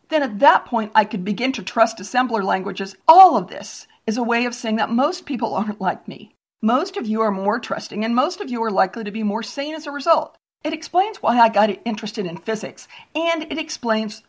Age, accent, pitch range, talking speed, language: 50-69, American, 205-285 Hz, 230 wpm, English